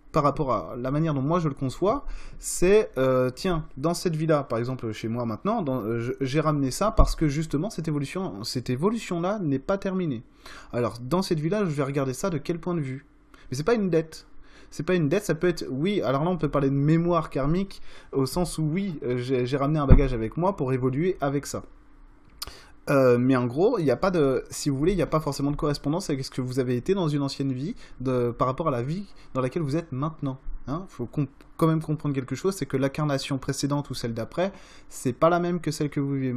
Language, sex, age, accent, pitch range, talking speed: French, male, 20-39, French, 130-160 Hz, 240 wpm